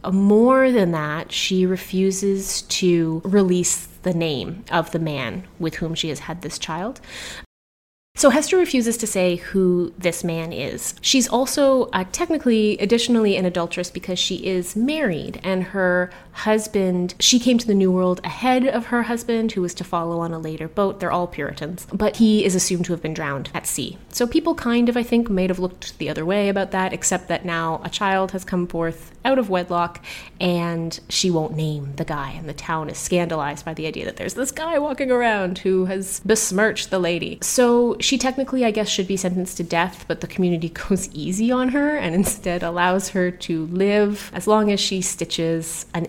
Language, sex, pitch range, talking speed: English, female, 165-205 Hz, 200 wpm